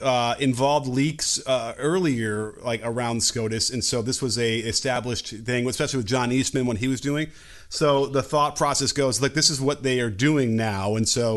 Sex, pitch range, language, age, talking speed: male, 110-140 Hz, English, 30-49, 200 wpm